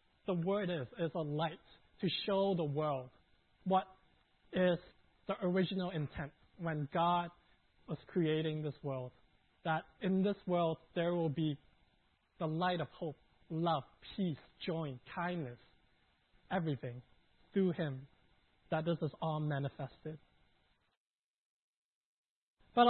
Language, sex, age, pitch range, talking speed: English, male, 20-39, 130-180 Hz, 120 wpm